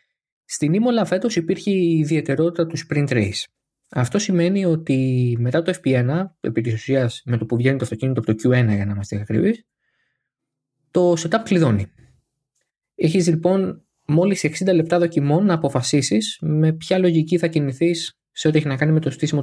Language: Greek